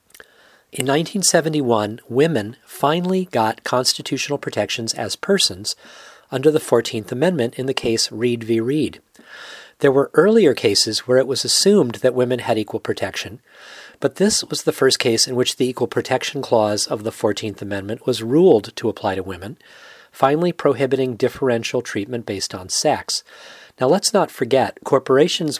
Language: English